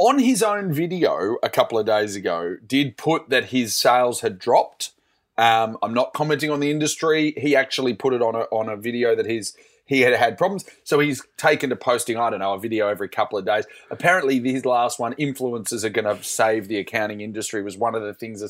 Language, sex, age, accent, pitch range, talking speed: English, male, 30-49, Australian, 110-150 Hz, 225 wpm